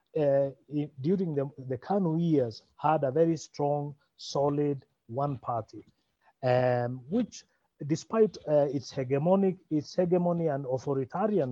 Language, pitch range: English, 125-170 Hz